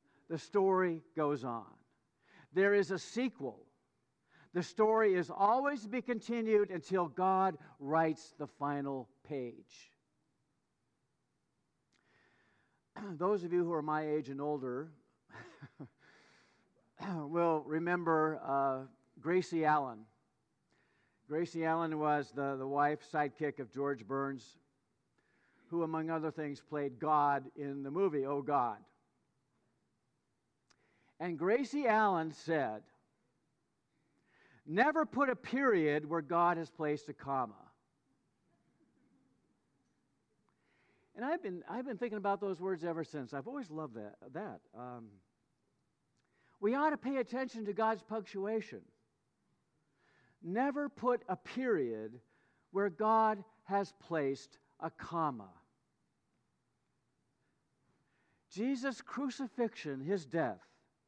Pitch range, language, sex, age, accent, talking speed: 140-205 Hz, English, male, 50-69, American, 105 wpm